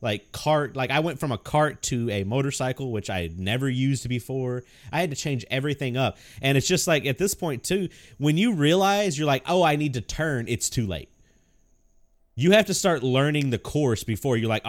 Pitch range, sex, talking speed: 125-185 Hz, male, 220 wpm